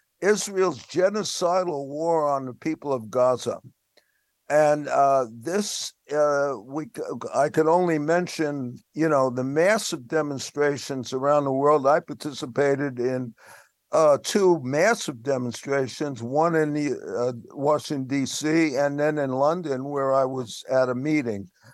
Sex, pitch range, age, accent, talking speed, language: male, 135-165 Hz, 60-79, American, 135 wpm, English